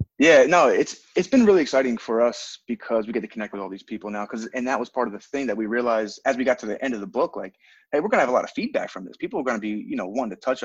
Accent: American